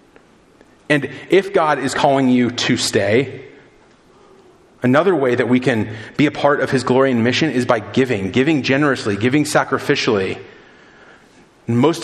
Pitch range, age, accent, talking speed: 125-150 Hz, 30-49, American, 145 wpm